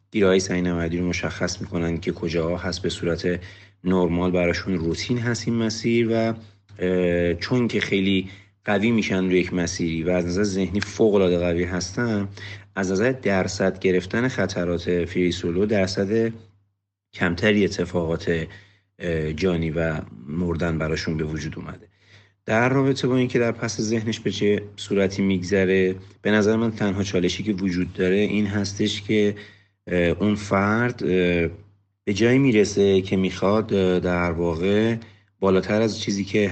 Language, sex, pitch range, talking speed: Persian, male, 85-105 Hz, 140 wpm